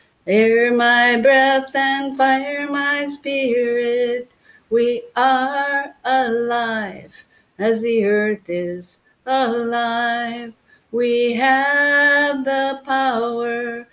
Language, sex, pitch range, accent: English, female, 220-265 Hz, American